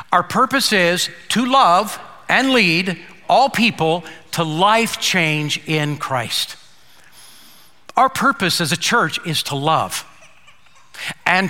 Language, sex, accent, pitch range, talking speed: English, male, American, 170-230 Hz, 120 wpm